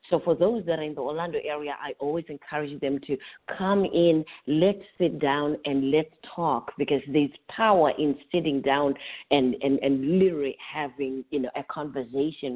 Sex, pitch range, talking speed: female, 145-175 Hz, 175 wpm